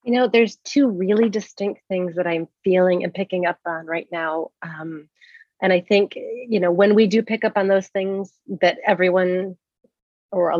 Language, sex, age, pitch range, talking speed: English, female, 30-49, 185-225 Hz, 190 wpm